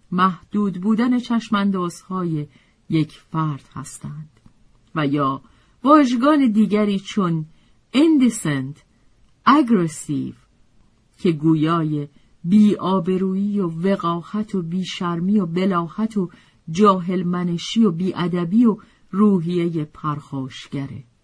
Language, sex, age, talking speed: Persian, female, 50-69, 90 wpm